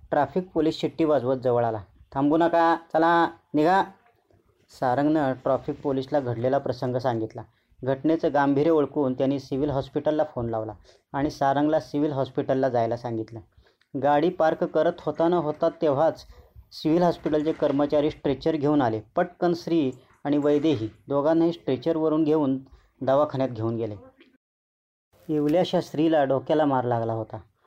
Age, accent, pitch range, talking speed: 30-49, native, 120-155 Hz, 130 wpm